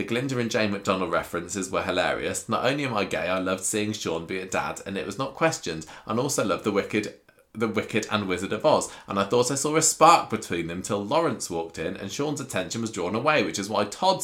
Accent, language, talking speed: British, English, 250 wpm